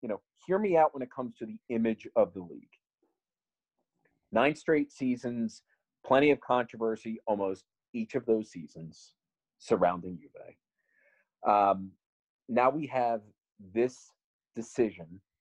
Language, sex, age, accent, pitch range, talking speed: English, male, 30-49, American, 105-140 Hz, 125 wpm